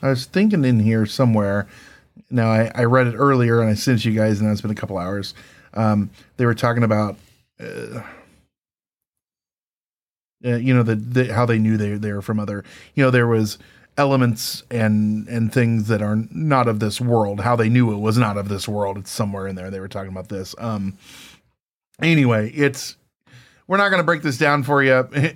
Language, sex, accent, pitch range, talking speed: English, male, American, 110-140 Hz, 205 wpm